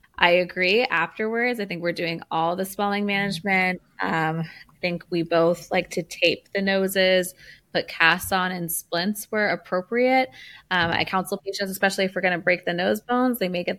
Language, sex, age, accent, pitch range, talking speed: English, female, 20-39, American, 170-200 Hz, 190 wpm